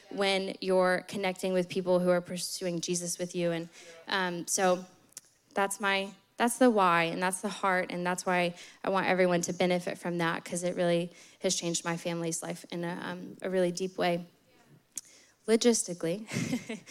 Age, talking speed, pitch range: 10-29, 170 wpm, 175-200 Hz